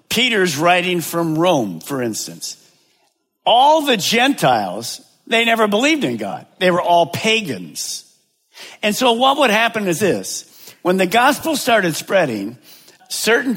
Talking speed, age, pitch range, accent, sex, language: 135 wpm, 50-69, 170-230 Hz, American, male, English